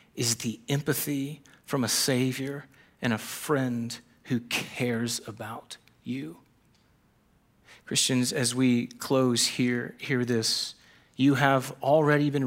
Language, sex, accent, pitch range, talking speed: English, male, American, 130-170 Hz, 115 wpm